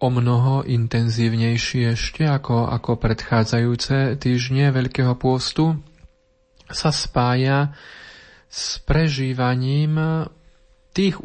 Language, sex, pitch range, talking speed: Slovak, male, 120-140 Hz, 80 wpm